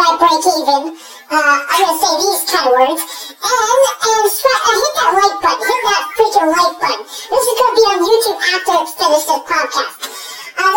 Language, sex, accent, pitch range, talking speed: English, male, American, 295-415 Hz, 175 wpm